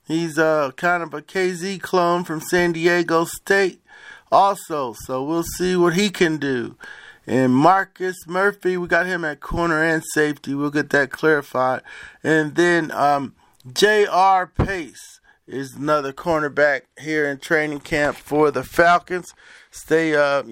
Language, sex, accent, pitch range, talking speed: English, male, American, 155-195 Hz, 150 wpm